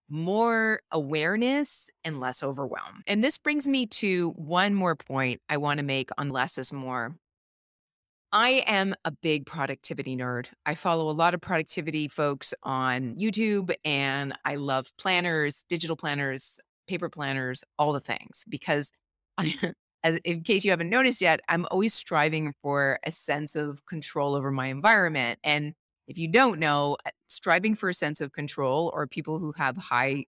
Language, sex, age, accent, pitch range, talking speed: English, female, 30-49, American, 140-180 Hz, 165 wpm